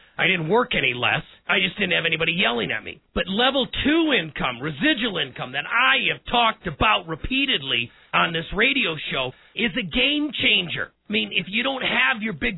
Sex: male